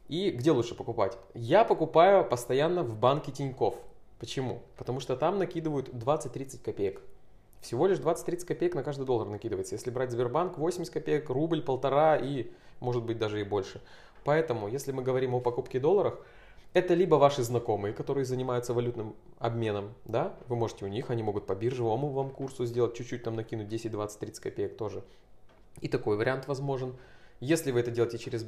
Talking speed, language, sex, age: 175 wpm, Russian, male, 20-39